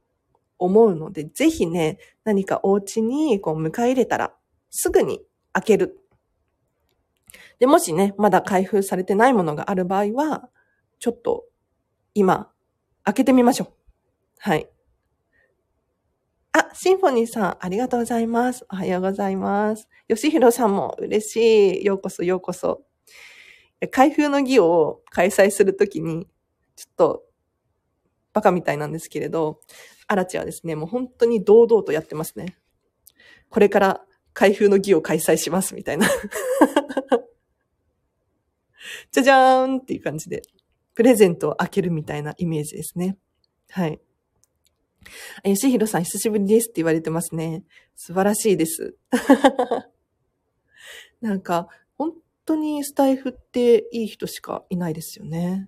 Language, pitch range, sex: Japanese, 185-255 Hz, female